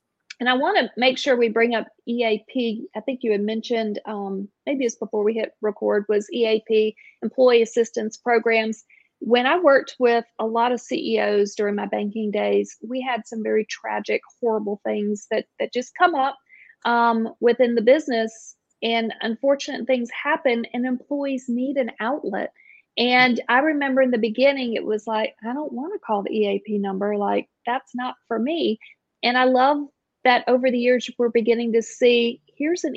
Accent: American